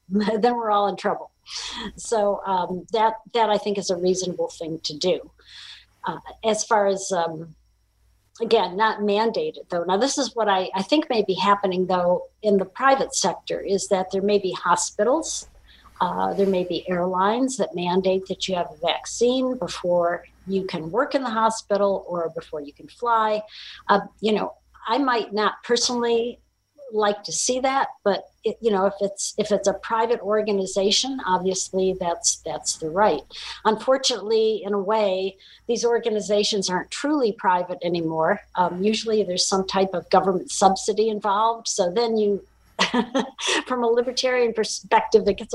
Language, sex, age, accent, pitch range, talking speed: English, female, 50-69, American, 185-225 Hz, 165 wpm